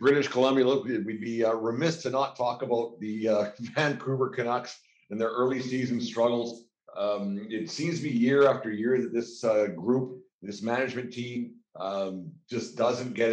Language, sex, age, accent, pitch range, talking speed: English, male, 50-69, American, 110-130 Hz, 170 wpm